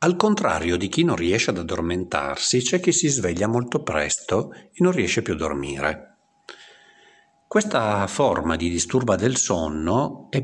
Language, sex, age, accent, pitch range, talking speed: Italian, male, 50-69, native, 90-140 Hz, 155 wpm